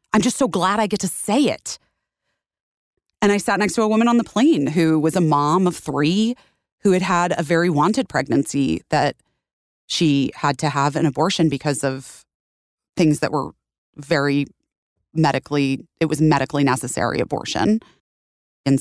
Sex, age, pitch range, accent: female, 30-49, 135-165 Hz, American